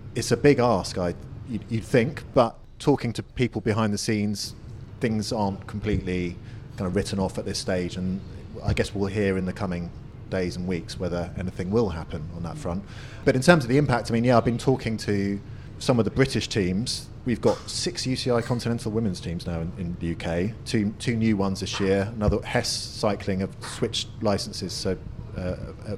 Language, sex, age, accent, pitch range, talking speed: English, male, 30-49, British, 100-115 Hz, 200 wpm